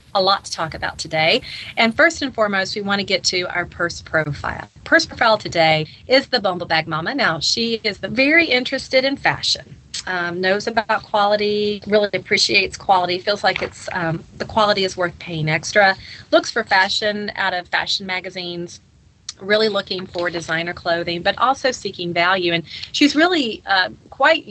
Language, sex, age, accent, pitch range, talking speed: English, female, 30-49, American, 175-225 Hz, 170 wpm